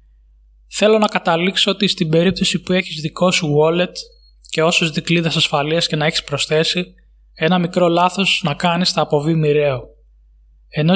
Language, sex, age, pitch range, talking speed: Greek, male, 20-39, 155-180 Hz, 155 wpm